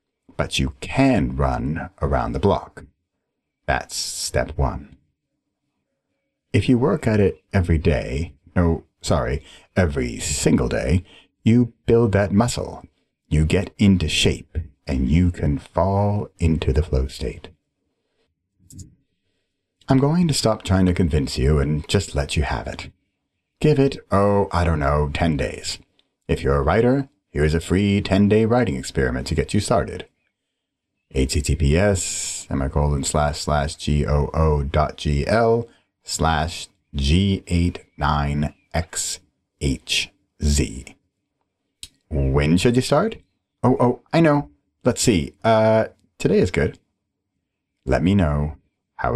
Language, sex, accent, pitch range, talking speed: English, male, American, 75-100 Hz, 130 wpm